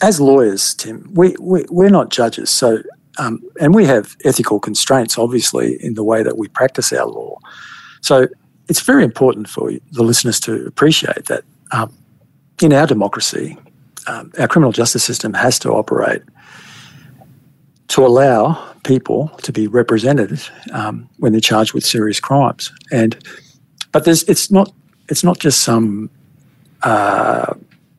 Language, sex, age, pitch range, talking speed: English, male, 50-69, 110-145 Hz, 150 wpm